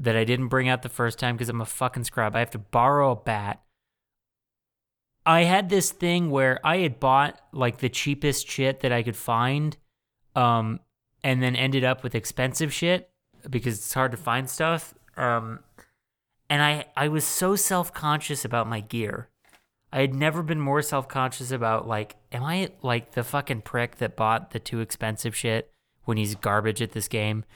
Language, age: English, 30-49